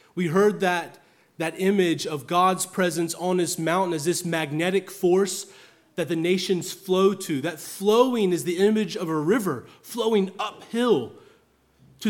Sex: male